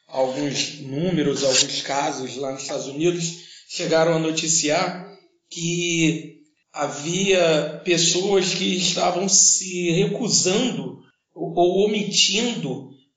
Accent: Brazilian